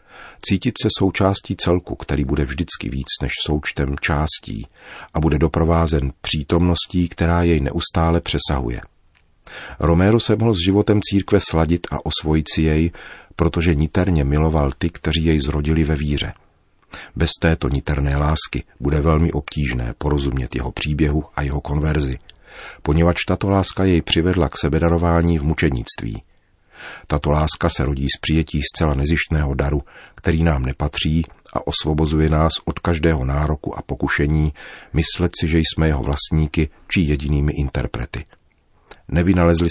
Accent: native